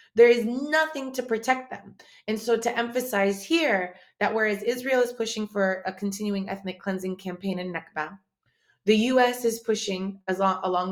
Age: 30-49